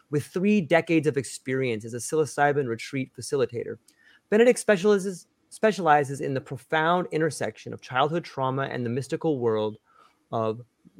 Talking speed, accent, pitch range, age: 135 wpm, American, 125-170 Hz, 30-49